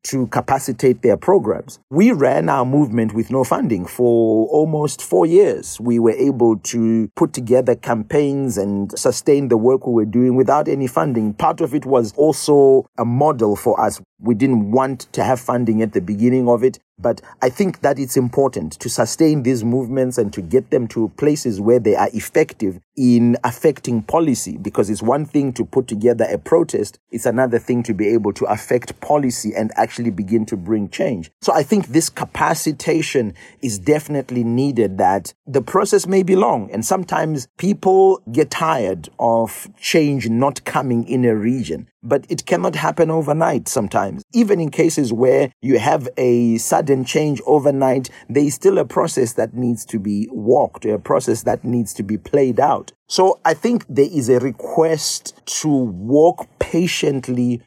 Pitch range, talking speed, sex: 115-150 Hz, 175 wpm, male